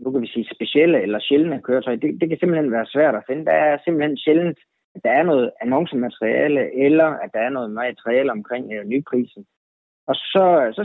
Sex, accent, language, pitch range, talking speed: male, native, Danish, 125-175 Hz, 205 wpm